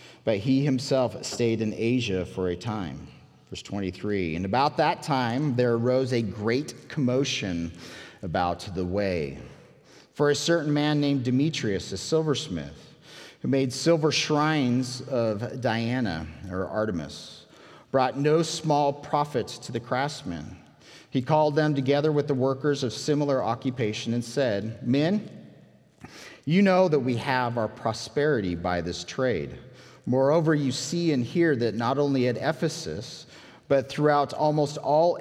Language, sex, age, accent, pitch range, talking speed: English, male, 40-59, American, 105-145 Hz, 140 wpm